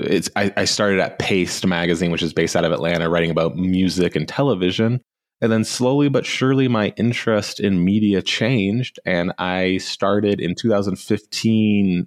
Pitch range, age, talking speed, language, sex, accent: 85-105 Hz, 20-39, 160 wpm, English, male, American